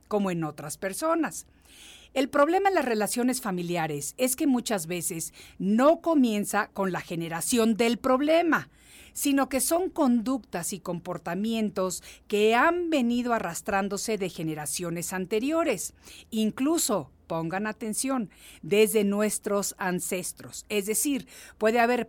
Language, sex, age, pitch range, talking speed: Spanish, female, 50-69, 190-255 Hz, 120 wpm